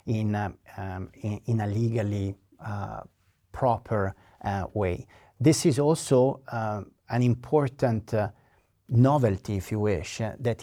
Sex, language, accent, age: male, English, Italian, 50-69